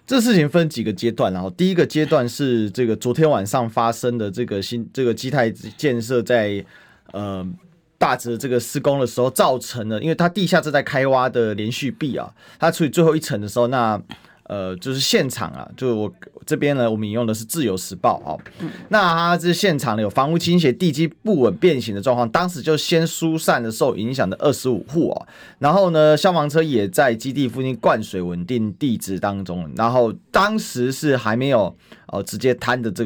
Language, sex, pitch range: Chinese, male, 115-160 Hz